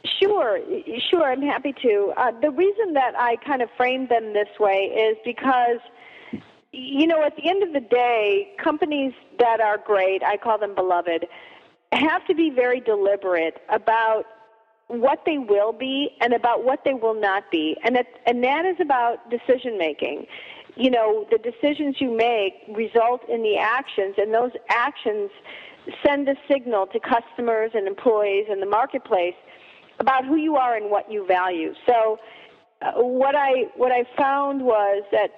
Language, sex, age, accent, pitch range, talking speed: English, female, 40-59, American, 210-275 Hz, 165 wpm